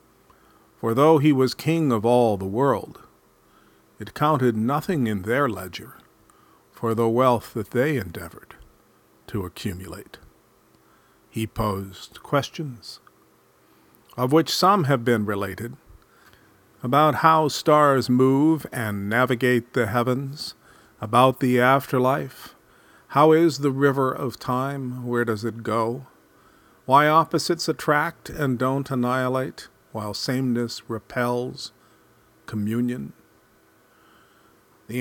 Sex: male